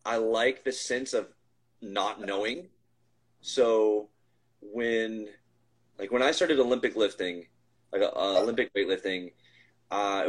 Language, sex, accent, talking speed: English, male, American, 120 wpm